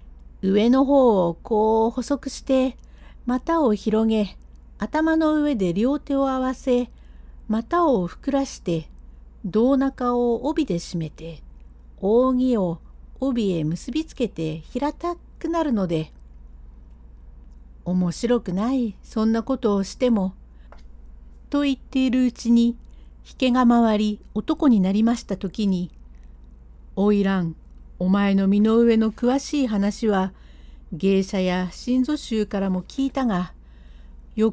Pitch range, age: 175-250 Hz, 60-79